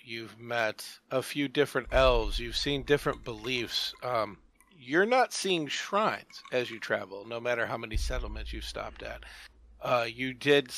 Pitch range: 115-135 Hz